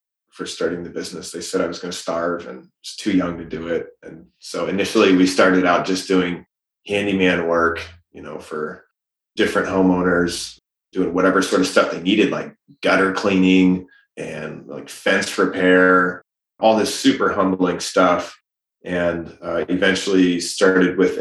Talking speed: 165 wpm